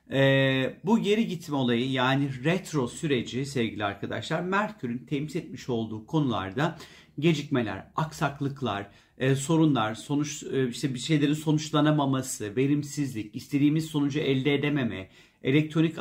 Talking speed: 115 wpm